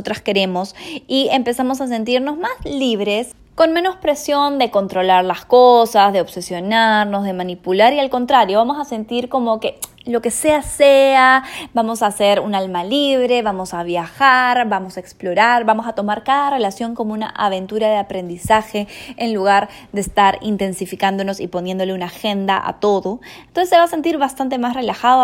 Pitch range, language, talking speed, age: 190-245 Hz, Spanish, 170 wpm, 20-39